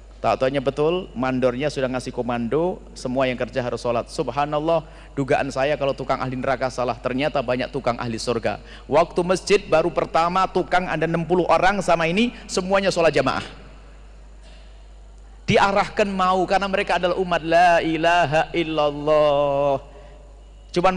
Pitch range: 130-180 Hz